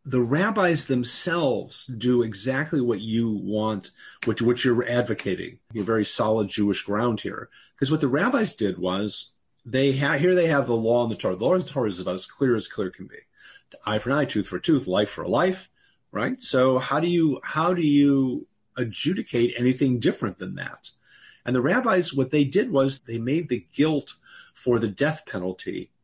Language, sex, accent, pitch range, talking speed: English, male, American, 115-150 Hz, 200 wpm